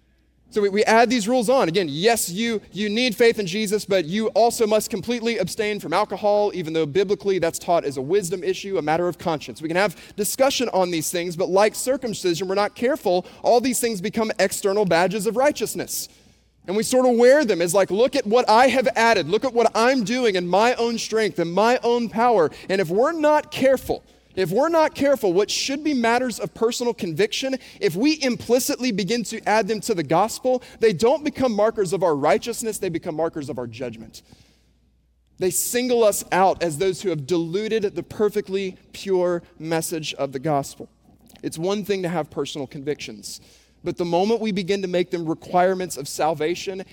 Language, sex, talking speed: English, male, 200 wpm